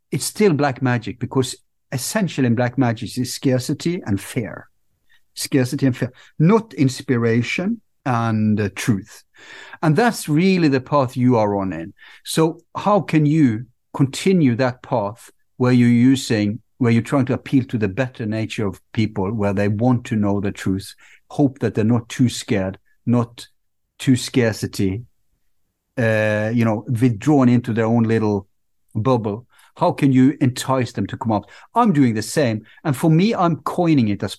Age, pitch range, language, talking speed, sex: 60-79, 110-145 Hz, English, 165 wpm, male